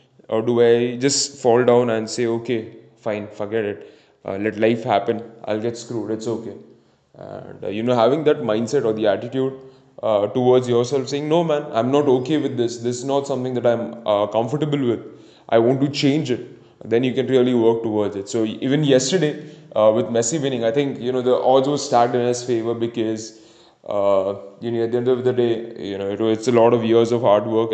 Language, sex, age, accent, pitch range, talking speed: English, male, 10-29, Indian, 115-135 Hz, 220 wpm